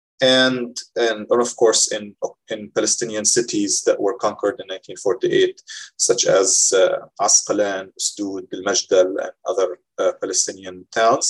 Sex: male